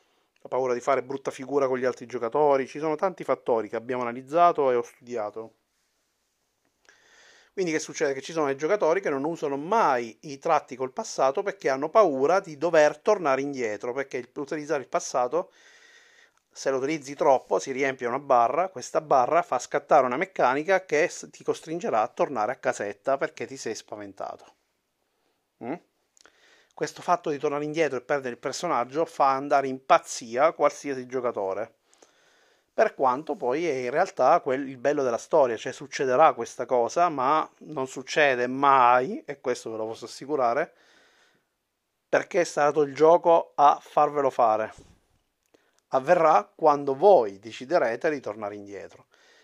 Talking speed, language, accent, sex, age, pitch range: 155 wpm, Italian, native, male, 30-49, 130-170 Hz